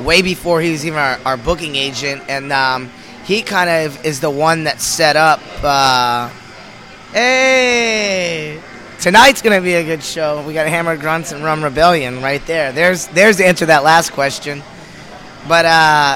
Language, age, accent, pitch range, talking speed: English, 20-39, American, 140-170 Hz, 180 wpm